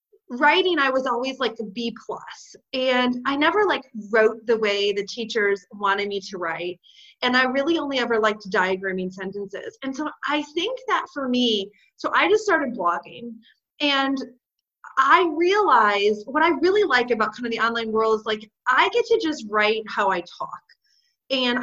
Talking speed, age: 180 wpm, 30-49